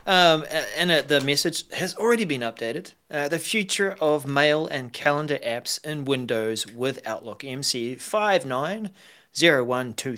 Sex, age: male, 40-59